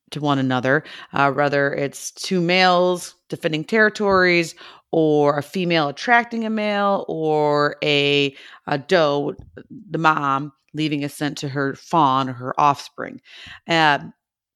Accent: American